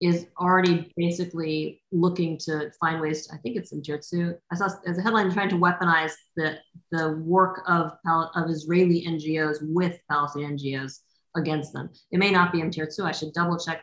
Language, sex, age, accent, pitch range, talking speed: English, female, 30-49, American, 155-185 Hz, 190 wpm